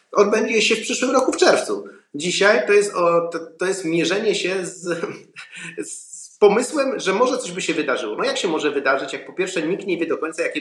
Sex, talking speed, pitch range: male, 220 wpm, 160-215 Hz